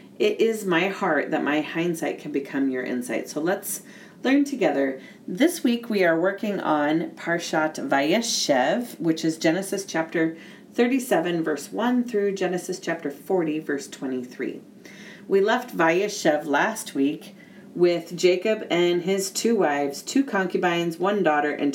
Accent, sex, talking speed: American, female, 145 wpm